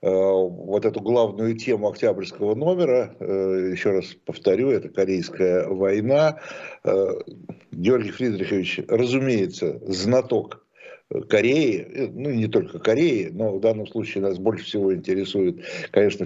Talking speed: 110 wpm